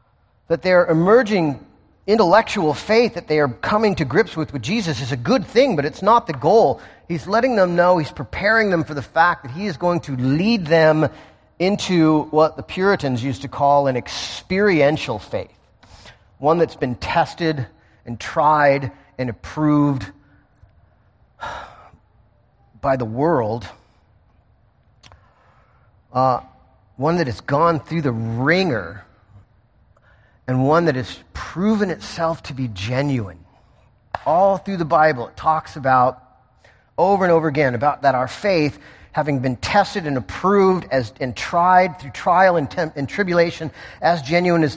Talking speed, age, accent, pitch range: 145 wpm, 40-59, American, 125-180 Hz